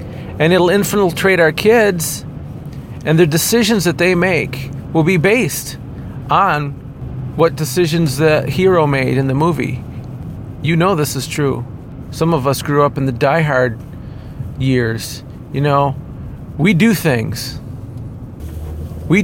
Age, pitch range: 40-59, 130-165 Hz